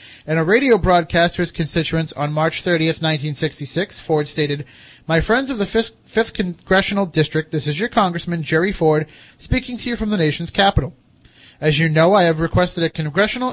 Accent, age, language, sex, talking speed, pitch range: American, 30-49, English, male, 185 wpm, 150-190 Hz